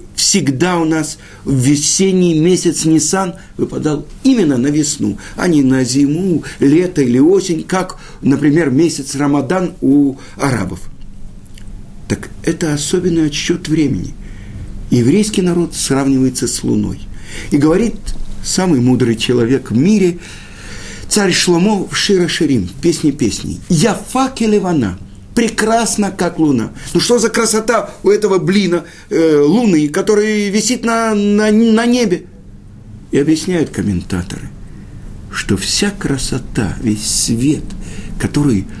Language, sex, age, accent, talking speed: Russian, male, 50-69, native, 115 wpm